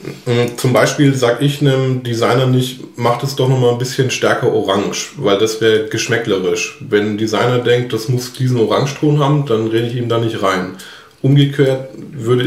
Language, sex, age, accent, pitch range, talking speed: German, male, 20-39, German, 110-135 Hz, 180 wpm